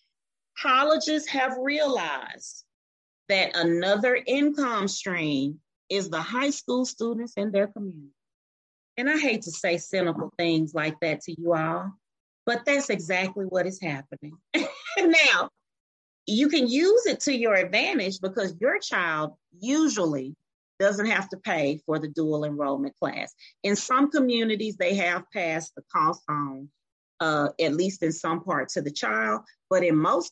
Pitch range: 160-235 Hz